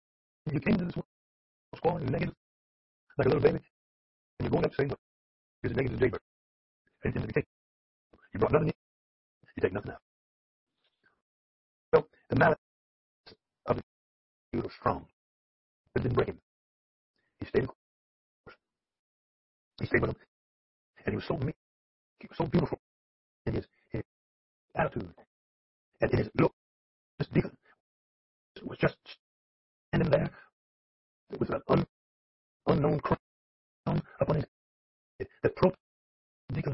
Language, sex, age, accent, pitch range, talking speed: English, female, 40-59, American, 65-70 Hz, 140 wpm